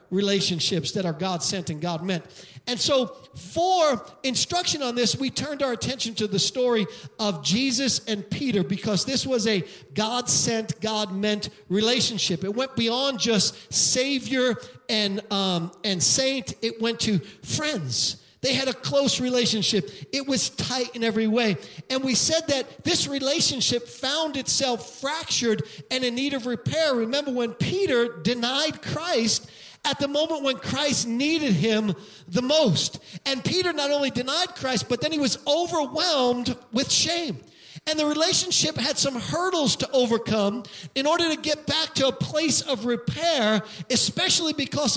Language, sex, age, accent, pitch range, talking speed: English, male, 40-59, American, 210-280 Hz, 160 wpm